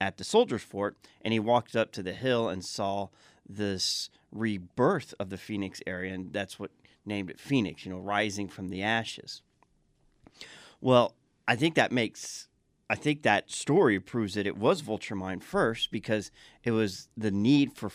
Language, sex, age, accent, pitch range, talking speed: English, male, 40-59, American, 95-115 Hz, 175 wpm